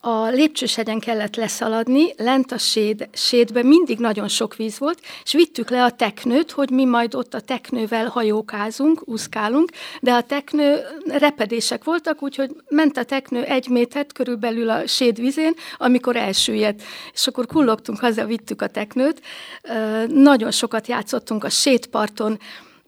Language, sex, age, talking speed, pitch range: Hungarian, female, 60-79, 140 wpm, 220-260 Hz